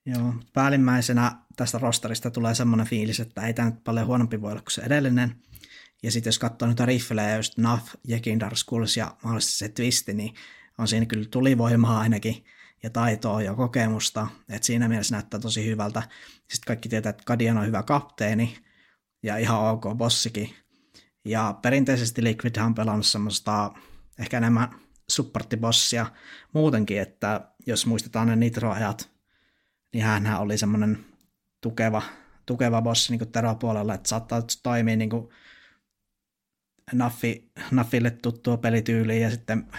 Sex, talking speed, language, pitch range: male, 145 wpm, Finnish, 110-120 Hz